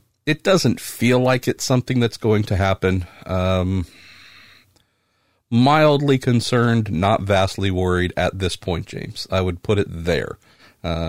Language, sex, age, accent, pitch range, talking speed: English, male, 50-69, American, 90-120 Hz, 140 wpm